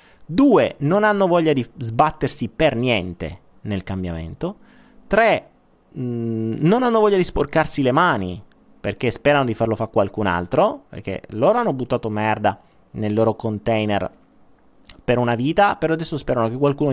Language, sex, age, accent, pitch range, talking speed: Italian, male, 30-49, native, 115-175 Hz, 145 wpm